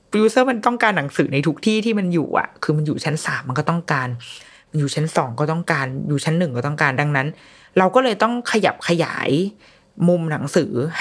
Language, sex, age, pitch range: Thai, female, 20-39, 145-180 Hz